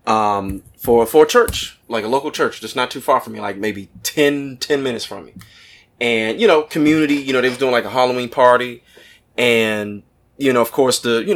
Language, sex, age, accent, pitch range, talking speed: English, male, 20-39, American, 105-125 Hz, 215 wpm